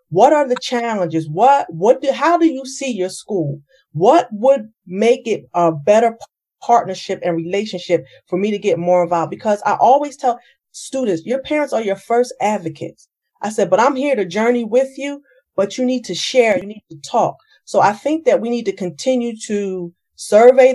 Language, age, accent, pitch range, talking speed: English, 40-59, American, 195-255 Hz, 195 wpm